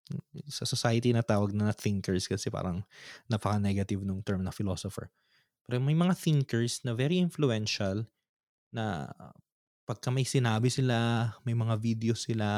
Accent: native